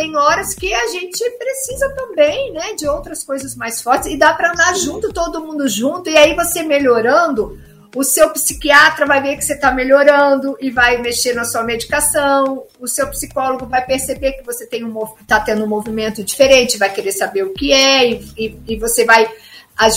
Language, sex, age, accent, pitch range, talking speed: Portuguese, female, 50-69, Brazilian, 240-320 Hz, 195 wpm